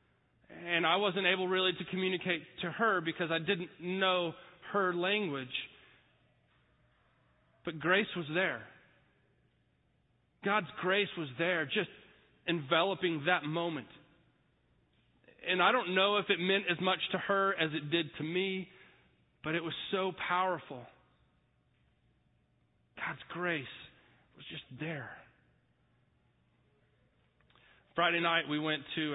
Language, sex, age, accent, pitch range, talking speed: English, male, 30-49, American, 135-175 Hz, 120 wpm